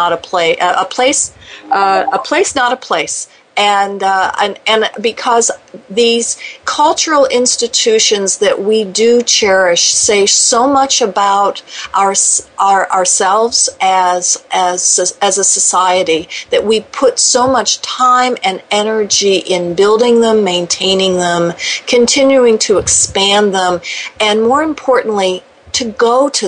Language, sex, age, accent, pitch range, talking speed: English, female, 50-69, American, 190-255 Hz, 130 wpm